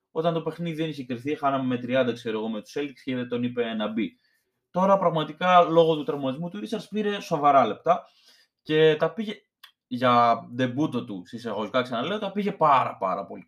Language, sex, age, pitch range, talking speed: Greek, male, 20-39, 120-170 Hz, 190 wpm